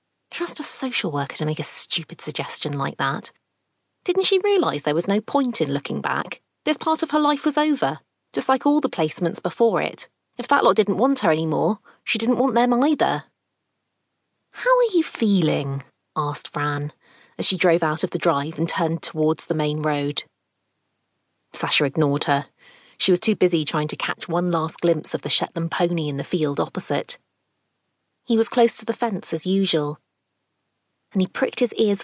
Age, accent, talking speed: 30-49, British, 185 wpm